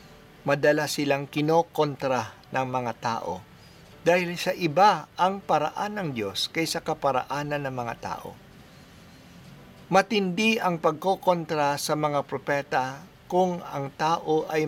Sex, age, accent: male, 50-69, native